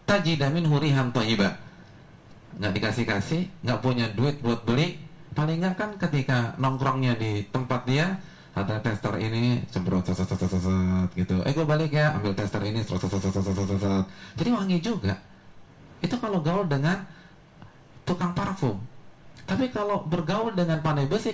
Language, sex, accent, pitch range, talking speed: Indonesian, male, native, 110-165 Hz, 150 wpm